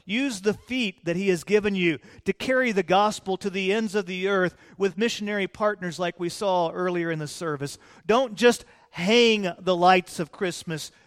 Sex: male